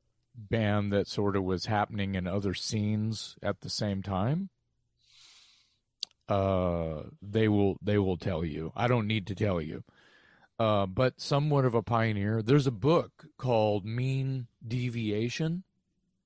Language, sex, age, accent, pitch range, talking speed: English, male, 40-59, American, 100-120 Hz, 140 wpm